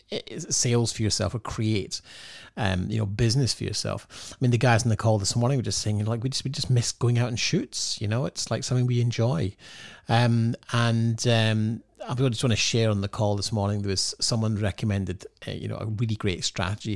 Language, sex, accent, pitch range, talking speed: English, male, British, 100-120 Hz, 225 wpm